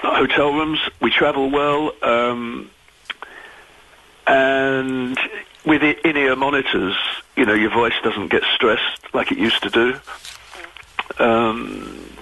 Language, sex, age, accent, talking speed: English, male, 50-69, British, 125 wpm